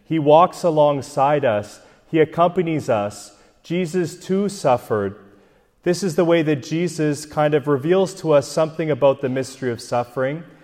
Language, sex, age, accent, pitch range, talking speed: English, male, 30-49, American, 125-170 Hz, 150 wpm